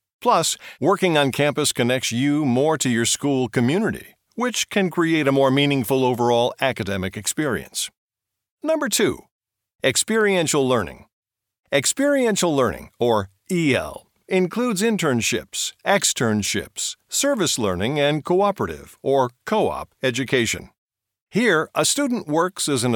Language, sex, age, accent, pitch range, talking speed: English, male, 50-69, American, 120-165 Hz, 115 wpm